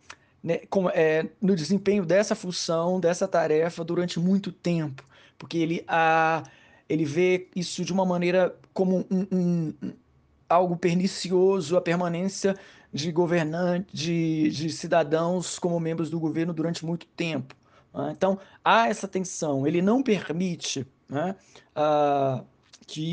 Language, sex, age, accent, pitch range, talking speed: Portuguese, male, 20-39, Brazilian, 155-180 Hz, 130 wpm